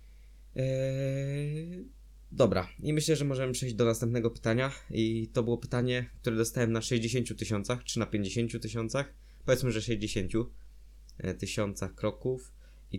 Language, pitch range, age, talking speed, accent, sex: Polish, 95-120 Hz, 20-39, 130 wpm, native, male